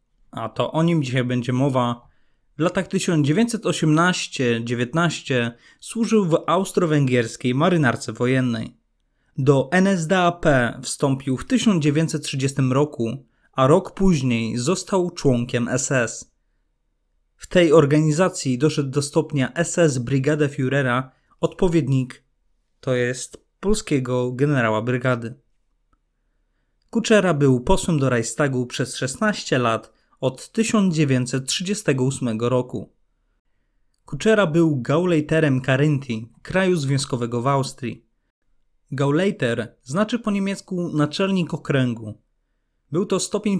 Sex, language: male, Polish